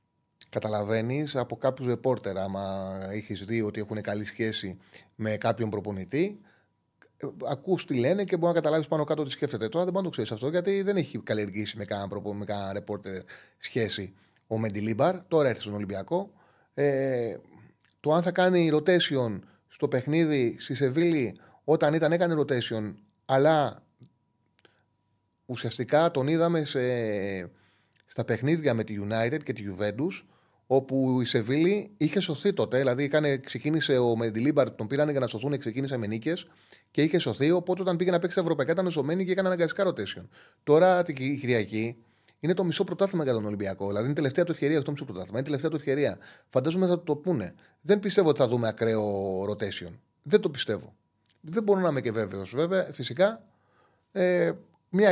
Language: Greek